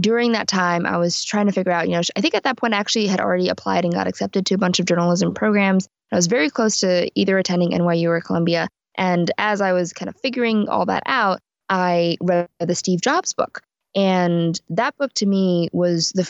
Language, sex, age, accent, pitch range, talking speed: English, female, 20-39, American, 175-210 Hz, 230 wpm